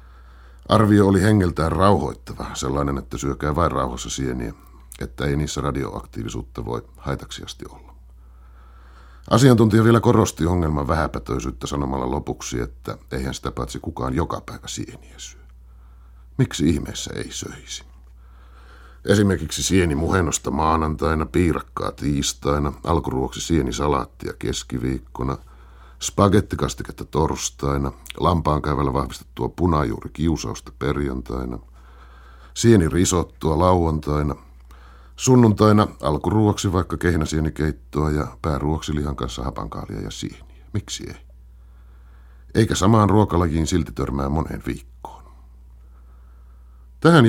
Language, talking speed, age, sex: Finnish, 105 wpm, 50-69, male